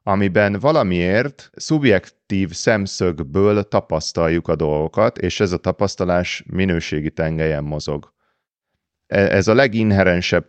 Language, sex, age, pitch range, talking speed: Hungarian, male, 30-49, 85-100 Hz, 95 wpm